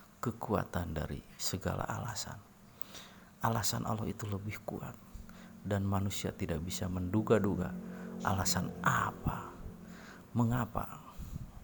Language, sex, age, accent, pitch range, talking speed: Indonesian, male, 50-69, native, 90-110 Hz, 90 wpm